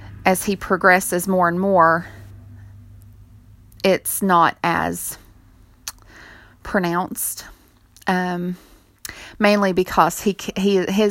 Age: 30-49